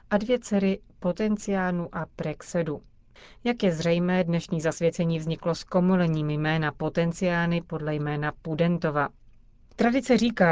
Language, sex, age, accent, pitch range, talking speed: Czech, female, 40-59, native, 160-195 Hz, 120 wpm